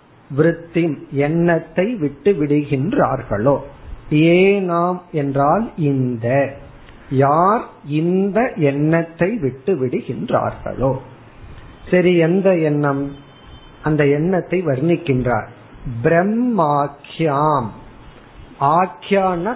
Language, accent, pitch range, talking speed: Tamil, native, 135-180 Hz, 35 wpm